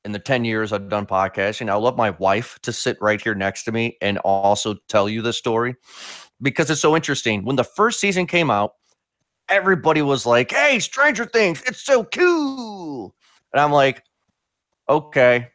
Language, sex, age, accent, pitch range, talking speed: English, male, 30-49, American, 110-160 Hz, 180 wpm